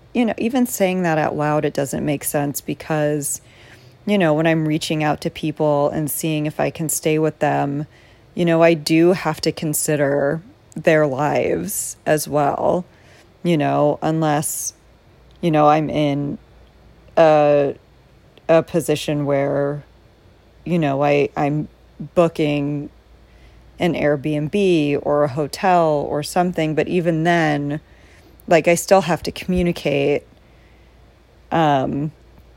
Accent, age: American, 30-49